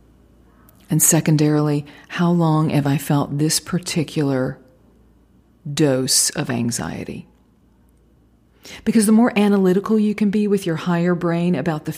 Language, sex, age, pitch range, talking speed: English, female, 40-59, 150-195 Hz, 125 wpm